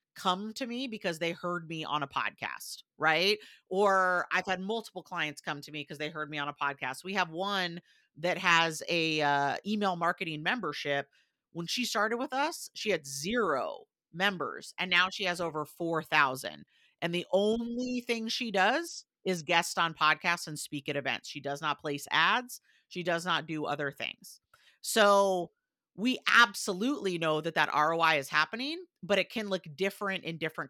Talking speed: 180 wpm